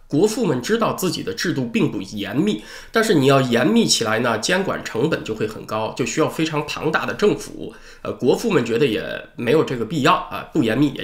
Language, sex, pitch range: Chinese, male, 130-190 Hz